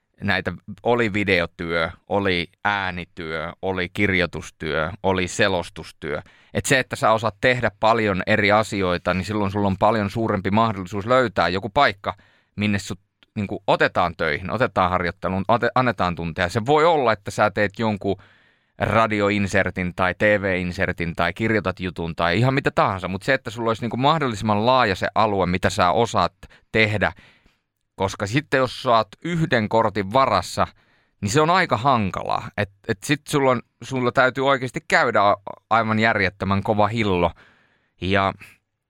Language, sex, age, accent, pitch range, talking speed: Finnish, male, 30-49, native, 95-115 Hz, 140 wpm